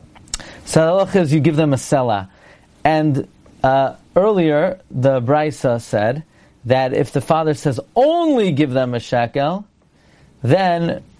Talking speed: 130 wpm